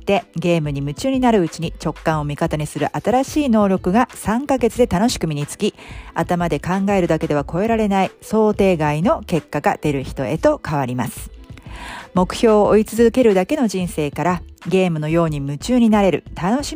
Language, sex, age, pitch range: Japanese, female, 50-69, 150-205 Hz